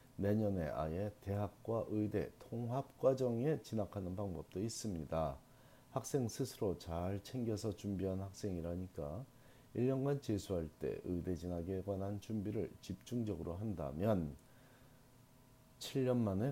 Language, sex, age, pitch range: Korean, male, 40-59, 90-125 Hz